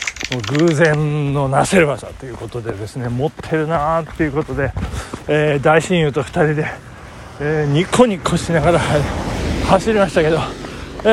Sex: male